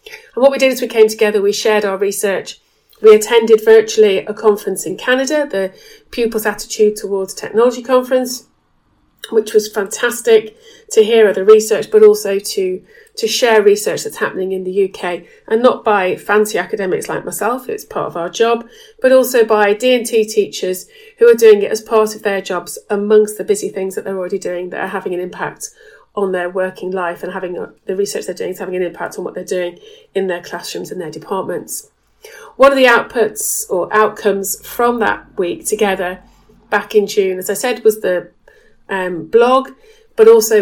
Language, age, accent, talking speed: English, 30-49, British, 190 wpm